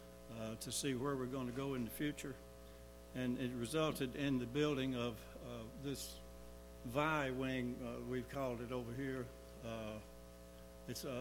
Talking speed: 165 wpm